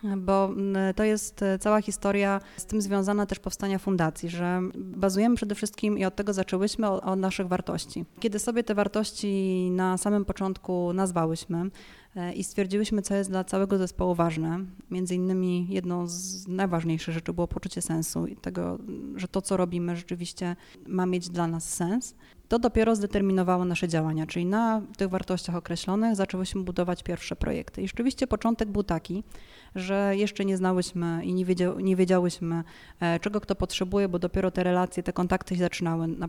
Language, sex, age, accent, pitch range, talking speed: Polish, female, 20-39, native, 180-200 Hz, 165 wpm